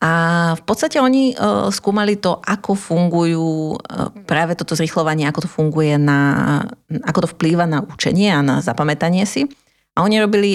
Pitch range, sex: 150-185 Hz, female